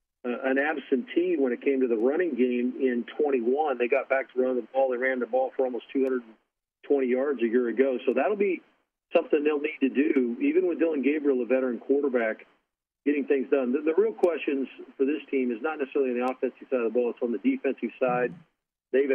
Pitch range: 125-135 Hz